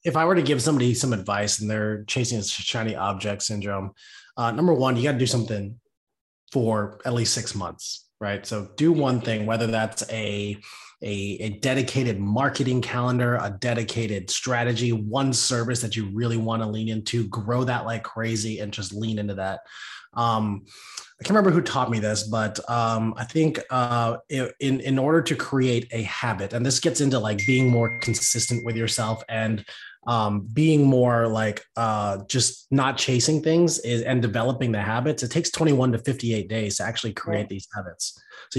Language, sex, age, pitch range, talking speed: English, male, 20-39, 110-130 Hz, 185 wpm